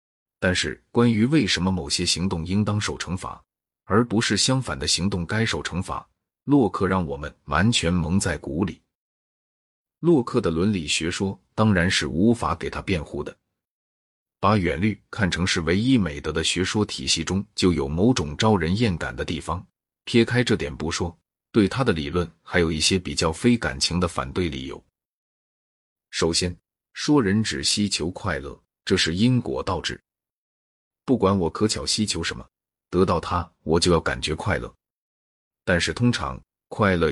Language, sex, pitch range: Chinese, male, 80-105 Hz